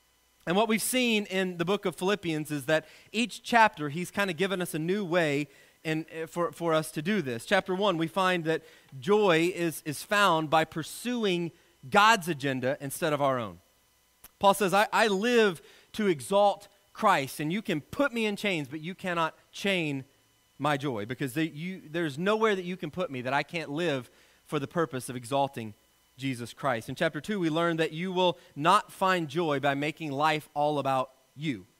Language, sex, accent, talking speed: English, male, American, 190 wpm